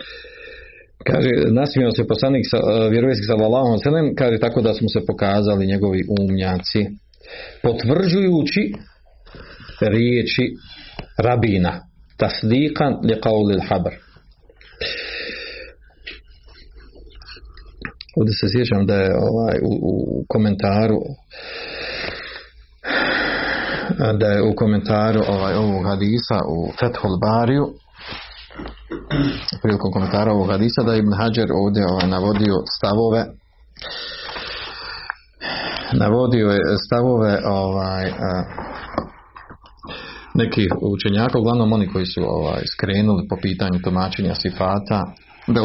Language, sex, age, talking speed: Croatian, male, 50-69, 90 wpm